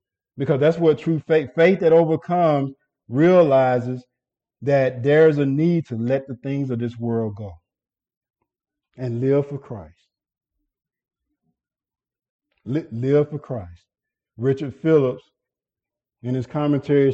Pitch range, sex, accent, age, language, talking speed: 125-150 Hz, male, American, 50-69, English, 120 wpm